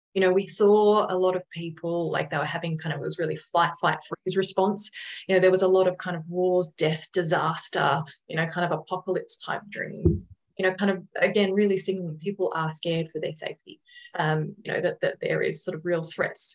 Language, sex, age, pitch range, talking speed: English, female, 20-39, 165-195 Hz, 230 wpm